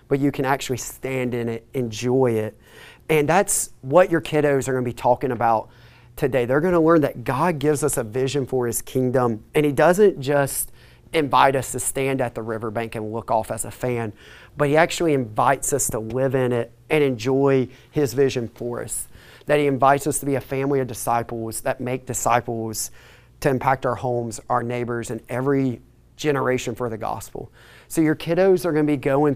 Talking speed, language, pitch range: 200 wpm, English, 120-145 Hz